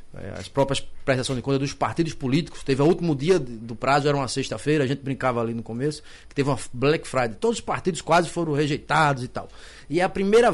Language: Portuguese